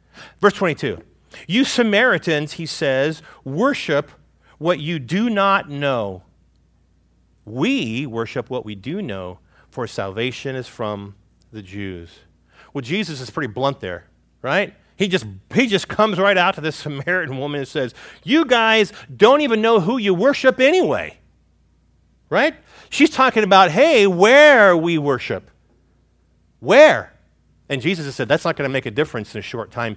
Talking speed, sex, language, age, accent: 155 wpm, male, English, 40-59, American